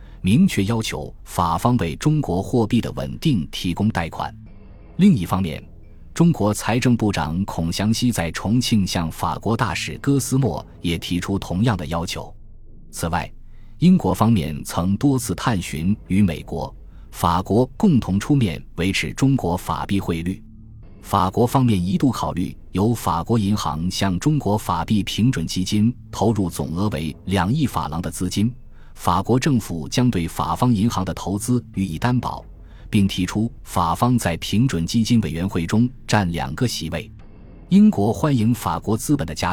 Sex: male